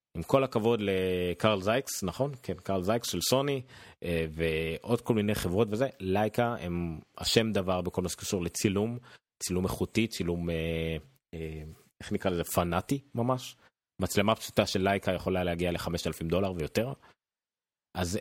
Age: 30-49